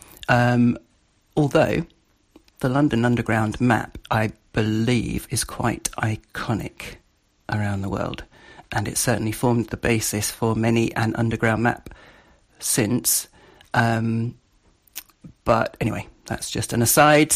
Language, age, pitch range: English, 40-59, 110-125 Hz